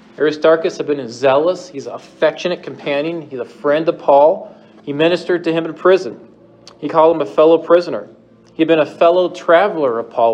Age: 40-59